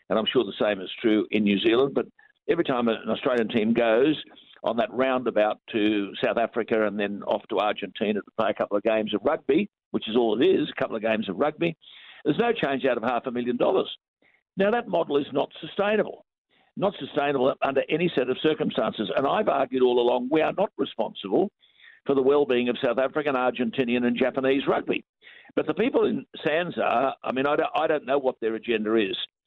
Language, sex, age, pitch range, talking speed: English, male, 50-69, 120-160 Hz, 210 wpm